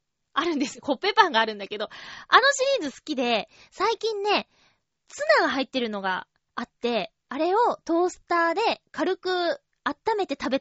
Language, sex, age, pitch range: Japanese, female, 20-39, 255-370 Hz